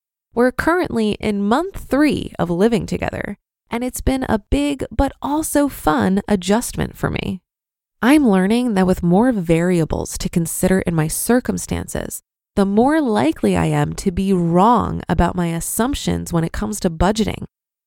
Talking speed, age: 155 wpm, 20-39